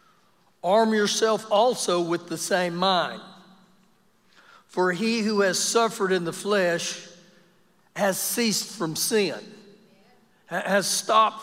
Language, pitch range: English, 190-220 Hz